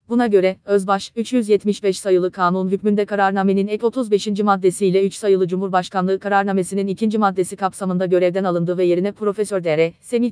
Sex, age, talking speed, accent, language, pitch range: female, 30-49, 145 wpm, native, Turkish, 185-210 Hz